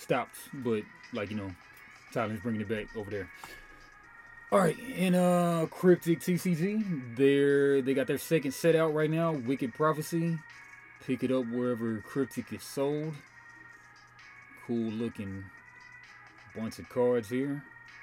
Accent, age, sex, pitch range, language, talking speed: American, 30-49, male, 115-160 Hz, English, 135 wpm